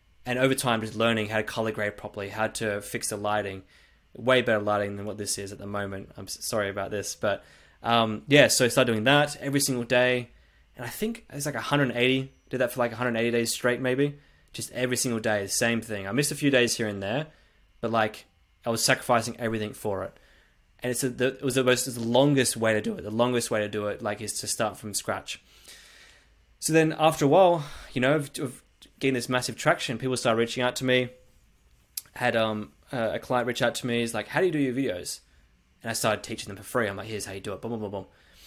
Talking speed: 250 wpm